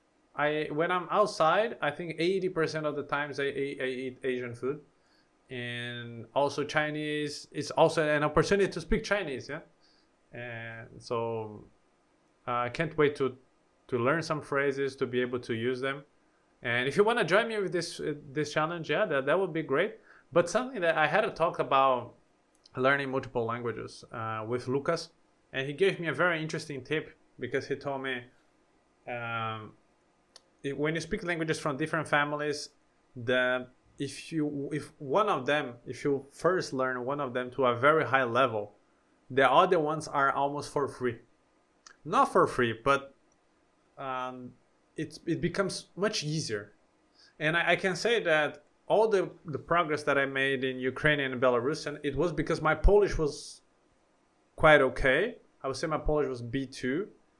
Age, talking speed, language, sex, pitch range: 20-39, 170 wpm, English, male, 130-160 Hz